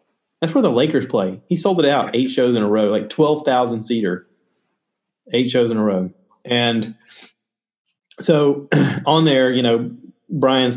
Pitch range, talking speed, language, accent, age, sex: 125-200 Hz, 160 wpm, English, American, 30-49, male